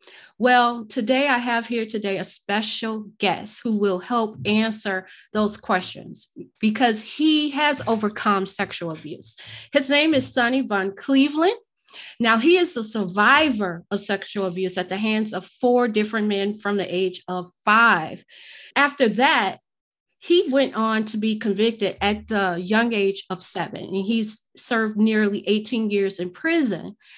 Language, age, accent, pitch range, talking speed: English, 30-49, American, 200-255 Hz, 150 wpm